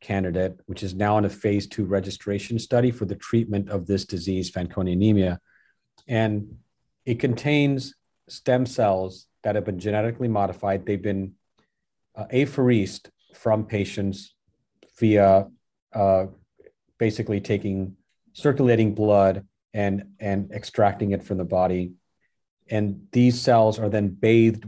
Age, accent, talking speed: 40-59, American, 130 wpm